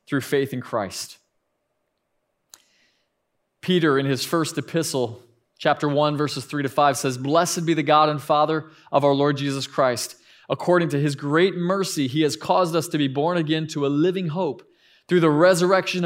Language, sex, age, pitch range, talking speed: English, male, 20-39, 140-165 Hz, 175 wpm